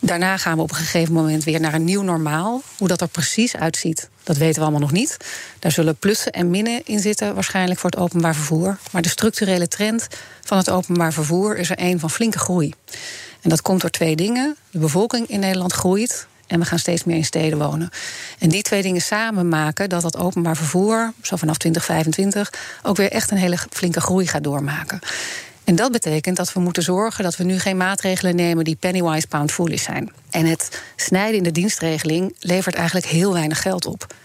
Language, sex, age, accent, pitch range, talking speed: Dutch, female, 40-59, Dutch, 165-195 Hz, 210 wpm